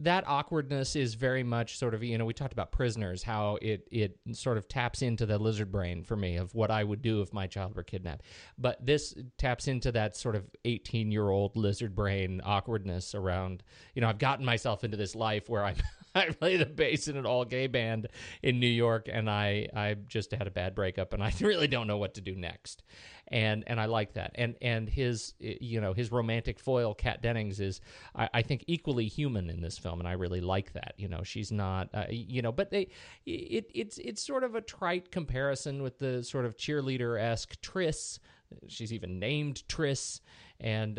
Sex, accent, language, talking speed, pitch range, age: male, American, English, 210 wpm, 105-130 Hz, 40-59